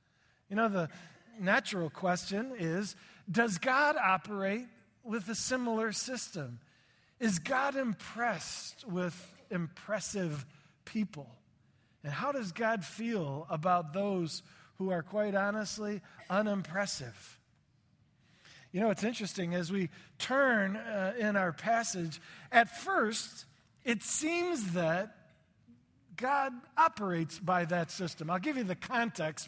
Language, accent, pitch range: English, American, 170-225 Hz